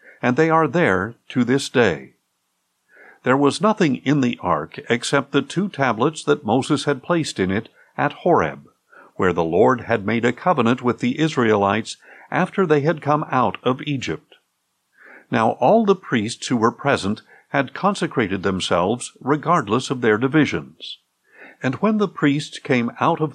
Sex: male